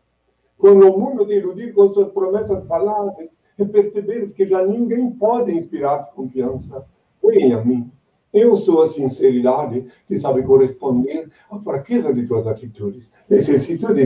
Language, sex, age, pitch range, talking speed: Portuguese, male, 50-69, 135-230 Hz, 140 wpm